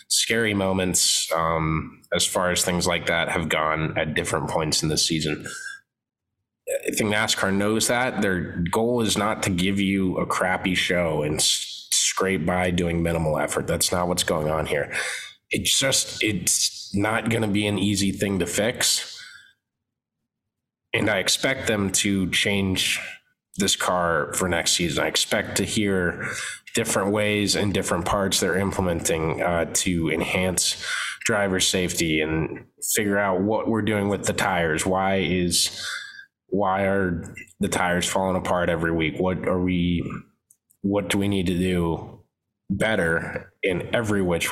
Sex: male